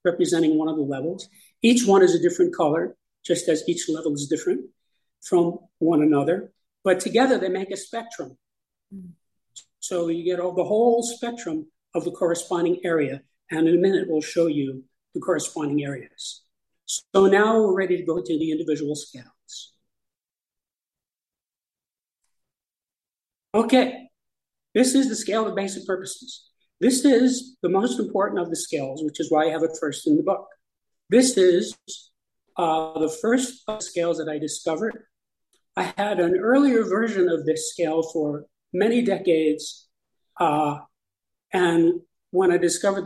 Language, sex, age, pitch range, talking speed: English, male, 50-69, 155-205 Hz, 155 wpm